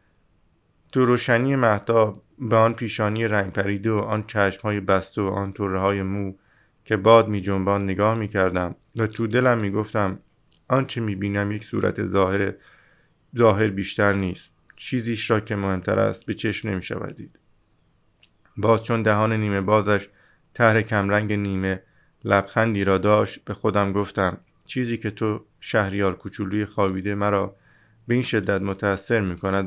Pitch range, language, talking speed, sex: 100-115 Hz, Persian, 145 wpm, male